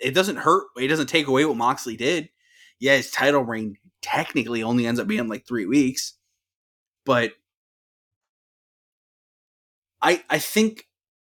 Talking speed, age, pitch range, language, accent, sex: 145 wpm, 20-39, 110-145 Hz, English, American, male